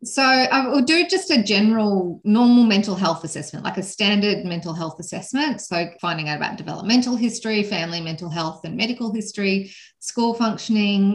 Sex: female